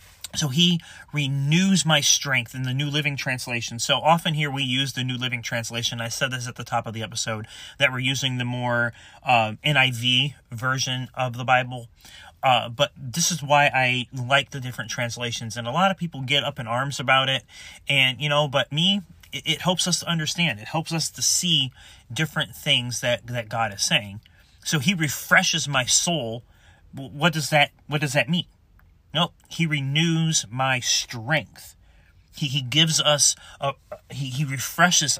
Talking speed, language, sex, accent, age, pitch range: 185 wpm, English, male, American, 30-49, 110-150 Hz